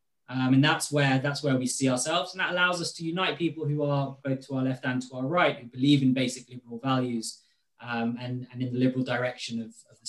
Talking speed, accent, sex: 250 wpm, British, male